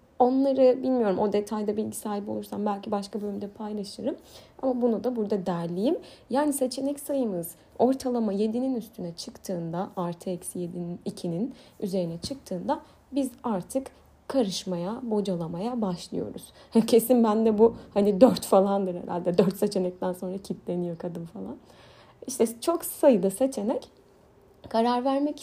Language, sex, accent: Turkish, female, native